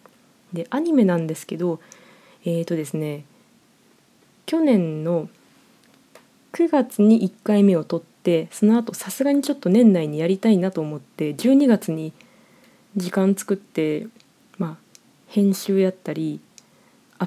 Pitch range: 170-230 Hz